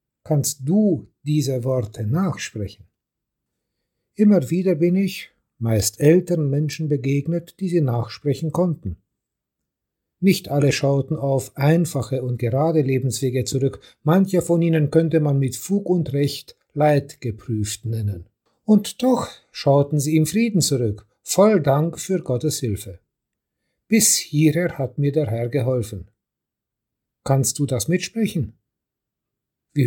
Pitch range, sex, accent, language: 125-165 Hz, male, German, German